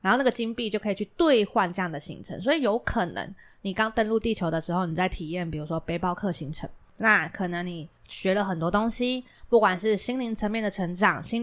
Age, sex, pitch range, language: 20-39, female, 180-225 Hz, Chinese